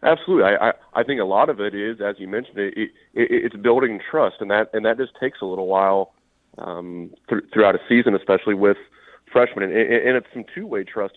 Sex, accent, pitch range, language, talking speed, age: male, American, 100-115 Hz, English, 225 wpm, 30-49